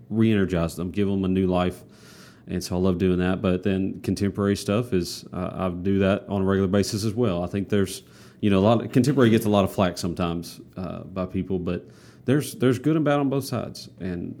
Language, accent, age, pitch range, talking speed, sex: English, American, 30-49, 90-105 Hz, 235 wpm, male